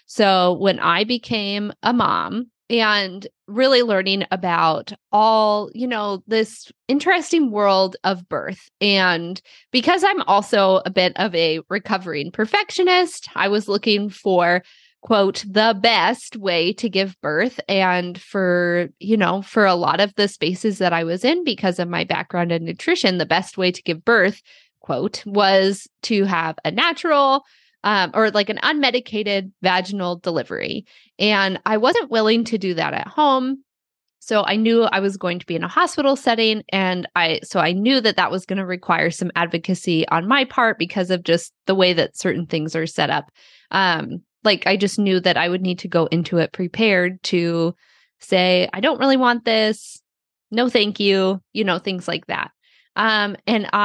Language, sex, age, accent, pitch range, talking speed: English, female, 20-39, American, 180-225 Hz, 175 wpm